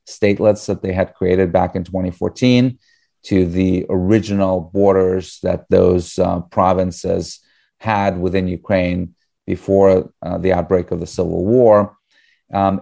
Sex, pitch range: male, 90-100 Hz